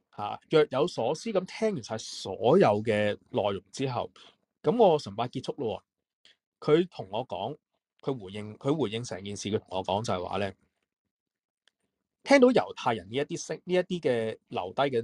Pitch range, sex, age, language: 110-185 Hz, male, 20-39, Chinese